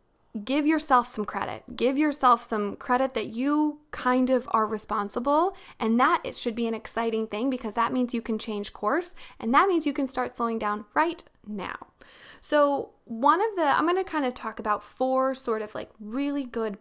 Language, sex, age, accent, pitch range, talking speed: English, female, 20-39, American, 225-290 Hz, 200 wpm